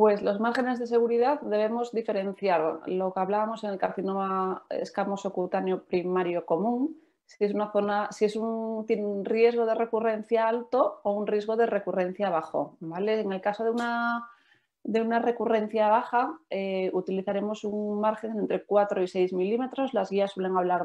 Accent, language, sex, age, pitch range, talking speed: Spanish, English, female, 30-49, 185-225 Hz, 150 wpm